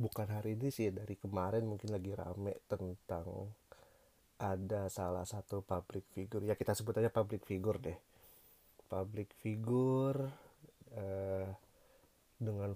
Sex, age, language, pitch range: male, 30-49, Indonesian, 100-115 Hz